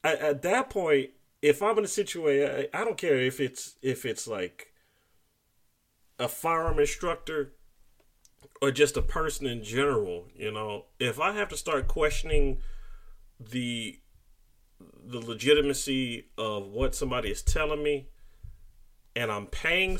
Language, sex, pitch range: English, male, 115-185 Hz